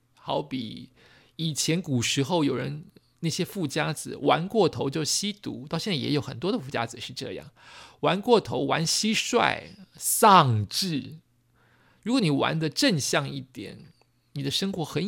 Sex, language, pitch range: male, Chinese, 135-175 Hz